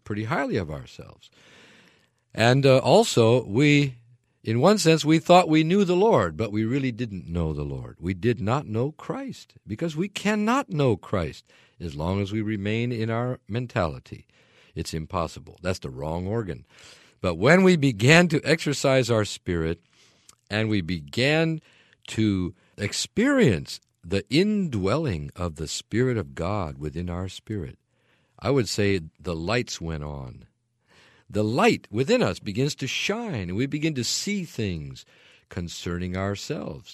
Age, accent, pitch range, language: 50-69, American, 90-135 Hz, English